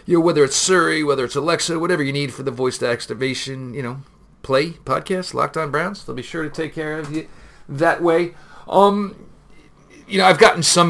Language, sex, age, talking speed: English, male, 40-59, 215 wpm